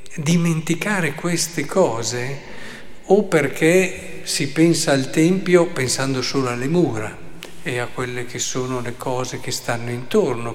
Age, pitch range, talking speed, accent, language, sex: 50-69, 115-145 Hz, 130 wpm, native, Italian, male